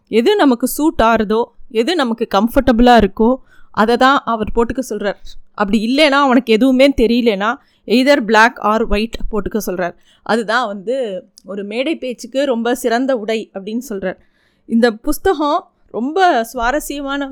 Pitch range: 225-290 Hz